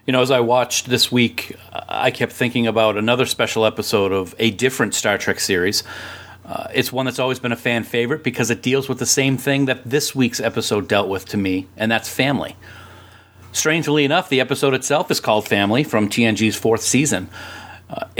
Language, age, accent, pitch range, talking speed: English, 40-59, American, 110-125 Hz, 200 wpm